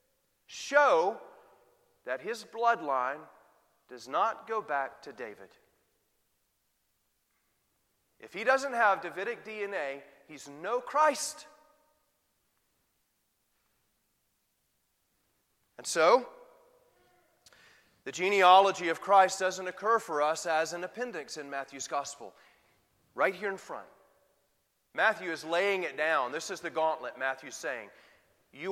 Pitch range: 155-230 Hz